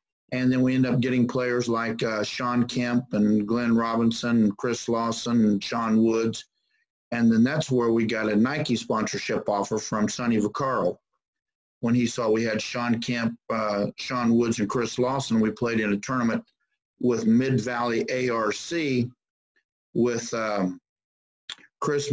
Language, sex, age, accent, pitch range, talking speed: English, male, 50-69, American, 110-125 Hz, 155 wpm